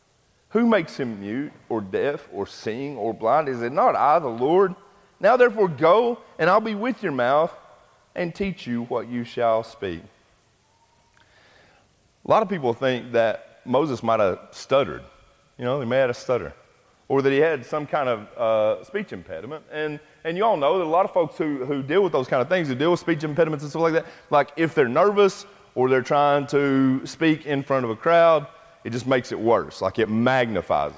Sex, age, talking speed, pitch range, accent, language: male, 30-49, 210 wpm, 150-210 Hz, American, English